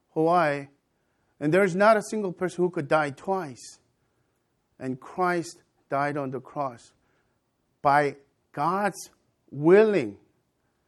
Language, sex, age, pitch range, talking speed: English, male, 50-69, 130-180 Hz, 115 wpm